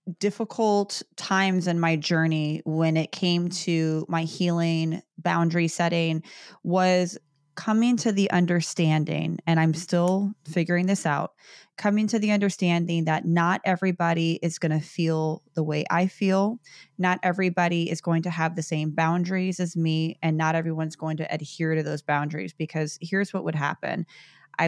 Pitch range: 155-175 Hz